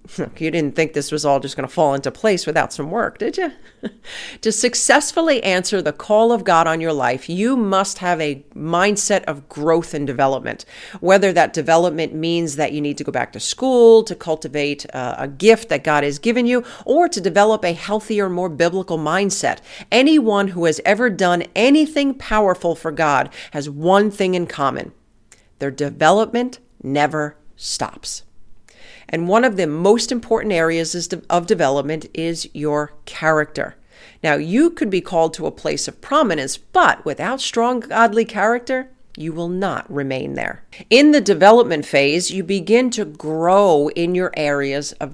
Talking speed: 170 wpm